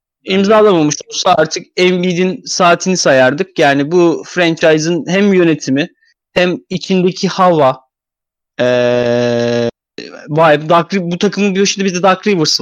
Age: 30-49